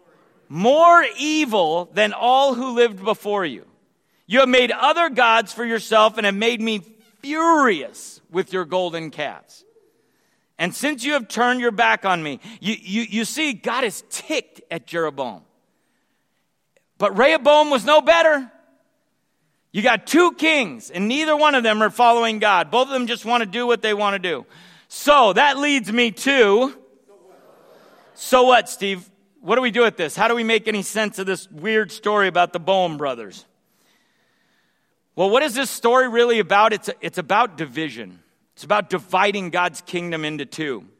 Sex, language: male, English